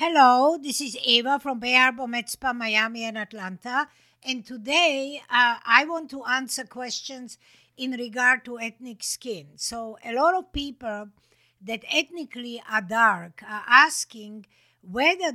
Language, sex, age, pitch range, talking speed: English, female, 60-79, 225-270 Hz, 135 wpm